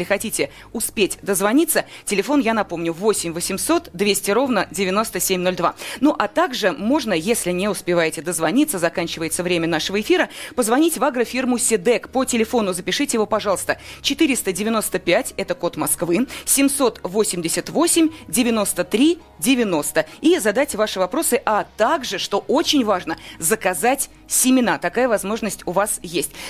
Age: 30-49